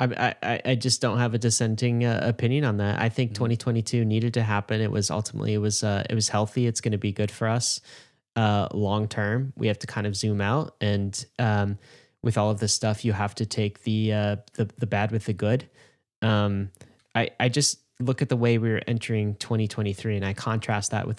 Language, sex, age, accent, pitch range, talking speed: English, male, 10-29, American, 105-120 Hz, 225 wpm